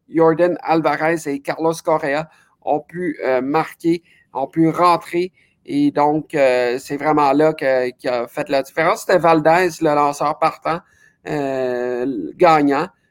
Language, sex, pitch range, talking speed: French, male, 145-170 Hz, 140 wpm